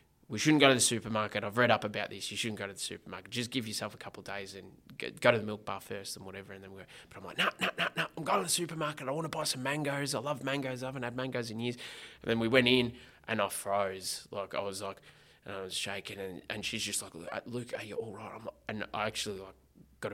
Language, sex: English, male